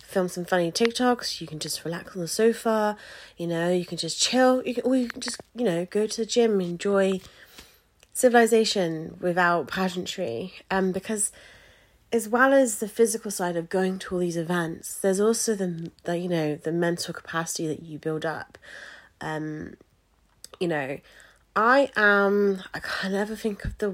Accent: British